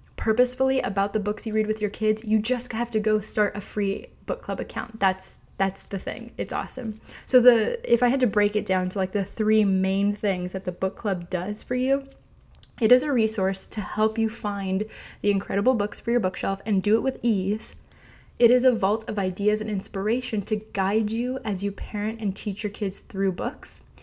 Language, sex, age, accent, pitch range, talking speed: English, female, 20-39, American, 195-225 Hz, 215 wpm